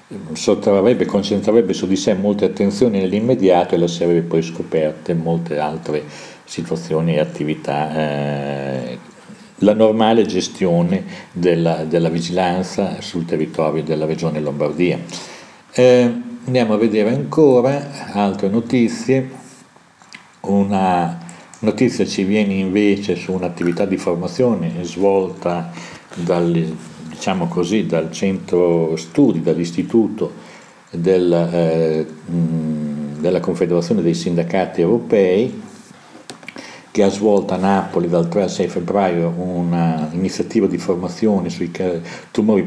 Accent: native